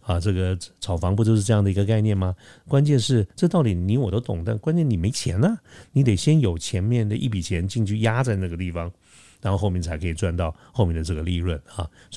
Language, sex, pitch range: Chinese, male, 90-115 Hz